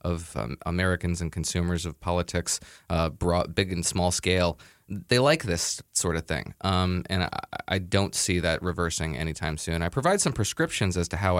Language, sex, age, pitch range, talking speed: English, male, 20-39, 85-110 Hz, 190 wpm